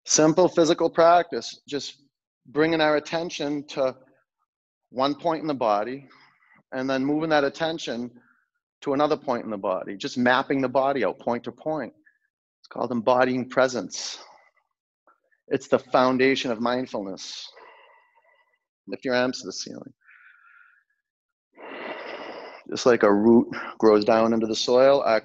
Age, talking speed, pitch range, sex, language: 30-49, 135 wpm, 125-165 Hz, male, English